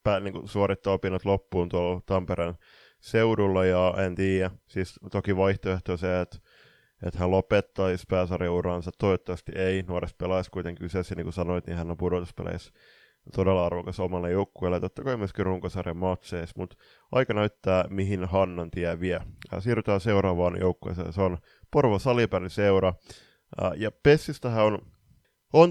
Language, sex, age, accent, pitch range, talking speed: Finnish, male, 20-39, native, 90-105 Hz, 150 wpm